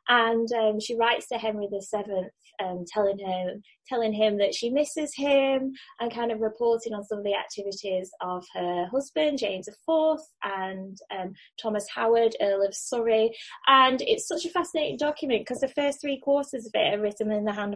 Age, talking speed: 20-39, 190 wpm